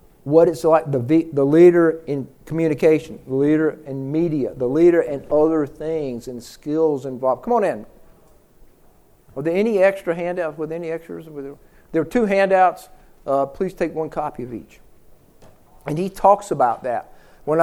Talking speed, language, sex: 170 wpm, English, male